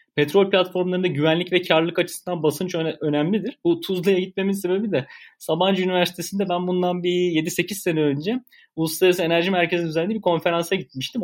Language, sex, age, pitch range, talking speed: Turkish, male, 30-49, 160-195 Hz, 150 wpm